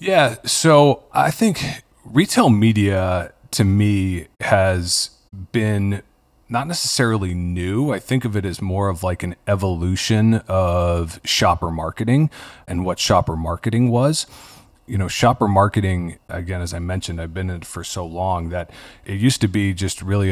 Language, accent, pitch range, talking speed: English, American, 85-100 Hz, 155 wpm